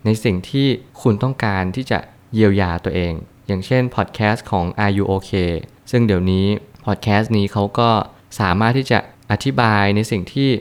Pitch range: 95-120 Hz